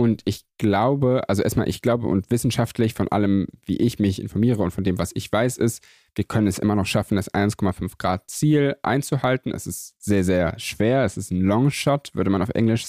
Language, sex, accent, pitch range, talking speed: German, male, German, 95-115 Hz, 205 wpm